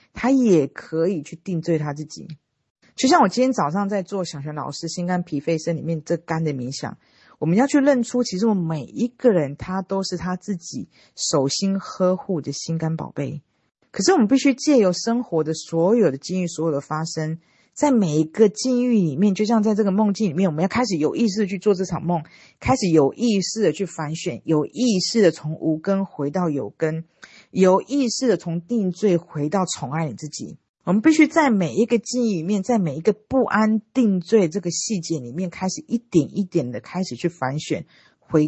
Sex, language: female, Chinese